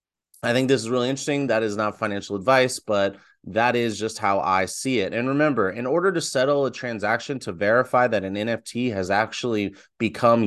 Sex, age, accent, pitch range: male, 30-49, American, 105-130 Hz